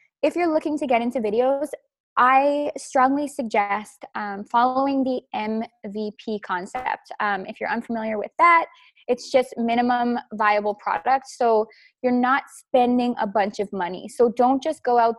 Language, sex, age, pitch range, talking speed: English, female, 20-39, 210-265 Hz, 155 wpm